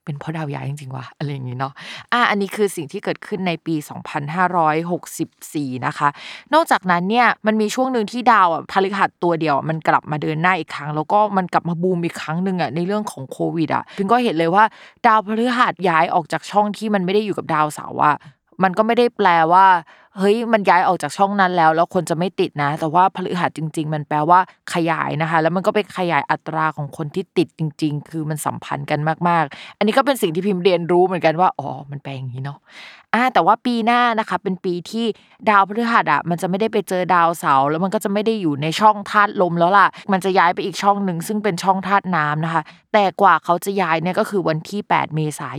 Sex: female